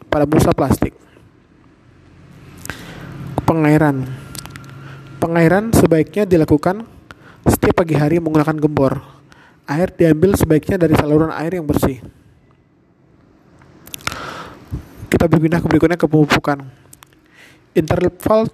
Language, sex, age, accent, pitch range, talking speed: Indonesian, male, 20-39, native, 150-170 Hz, 85 wpm